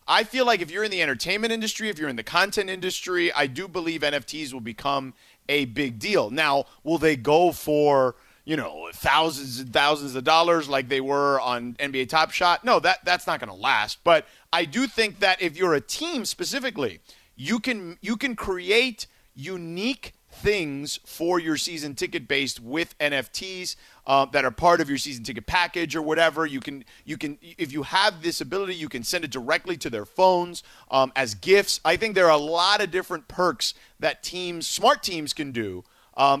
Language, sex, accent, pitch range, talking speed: English, male, American, 140-185 Hz, 200 wpm